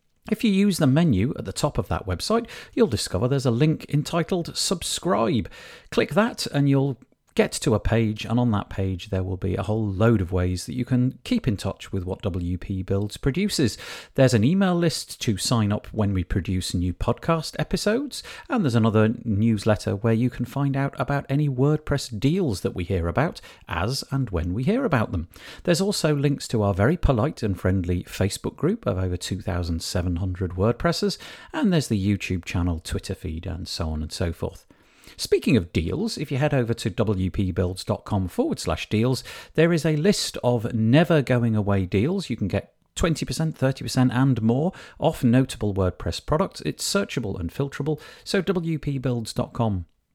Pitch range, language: 95-145 Hz, English